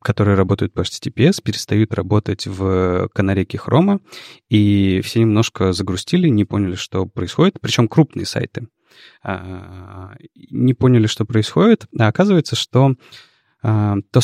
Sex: male